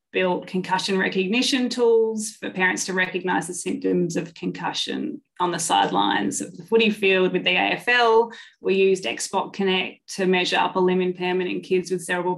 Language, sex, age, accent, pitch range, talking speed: English, female, 20-39, Australian, 180-225 Hz, 170 wpm